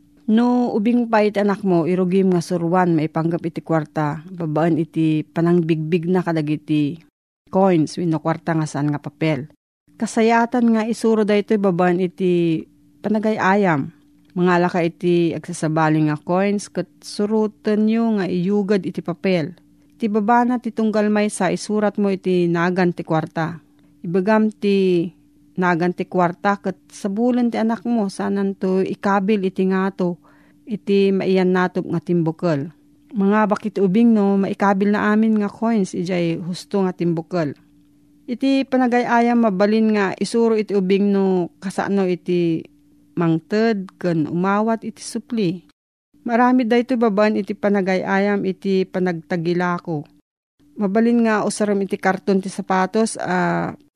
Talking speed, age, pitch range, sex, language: 130 wpm, 40-59, 170-210 Hz, female, Filipino